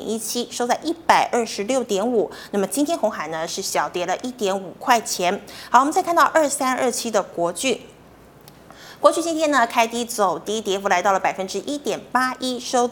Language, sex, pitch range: Chinese, female, 195-255 Hz